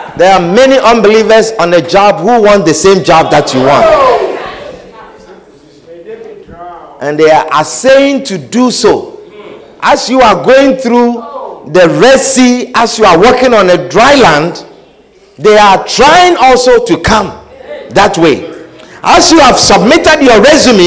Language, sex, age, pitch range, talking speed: English, male, 50-69, 210-315 Hz, 150 wpm